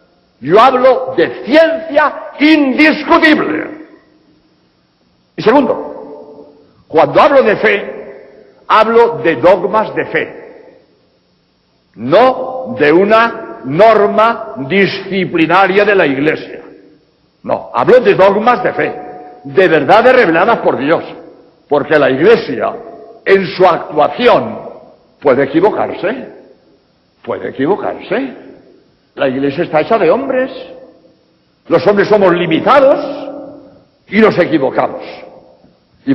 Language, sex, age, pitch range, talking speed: Spanish, male, 60-79, 190-295 Hz, 100 wpm